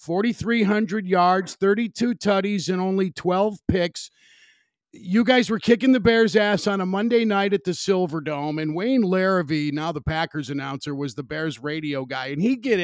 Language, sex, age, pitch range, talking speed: English, male, 50-69, 170-215 Hz, 180 wpm